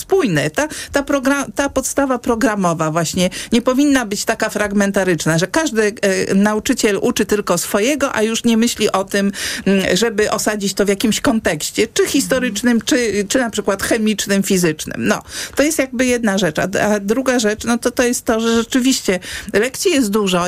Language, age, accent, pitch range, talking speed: Polish, 50-69, native, 195-255 Hz, 165 wpm